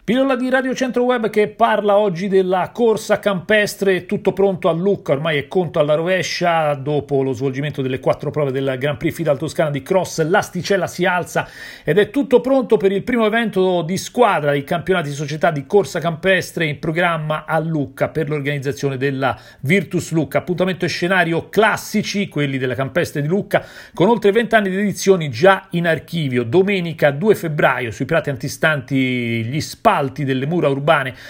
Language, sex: Italian, male